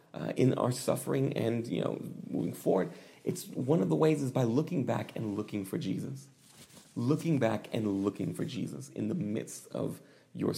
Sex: male